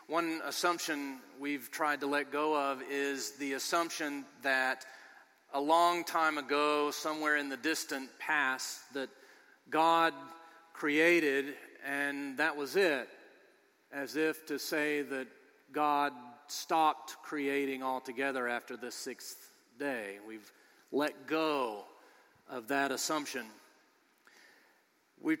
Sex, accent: male, American